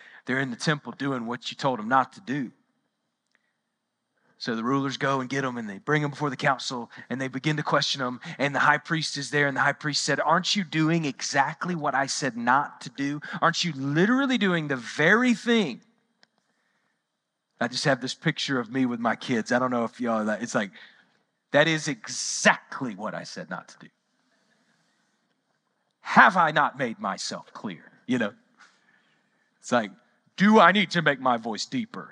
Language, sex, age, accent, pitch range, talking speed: English, male, 30-49, American, 140-220 Hz, 200 wpm